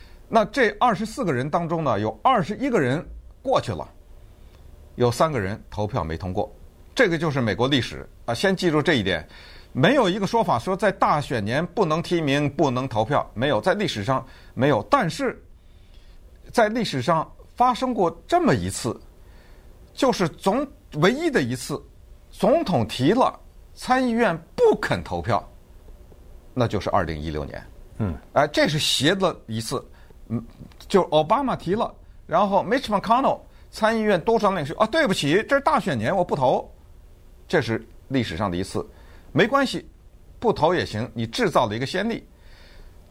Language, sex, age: Chinese, male, 50-69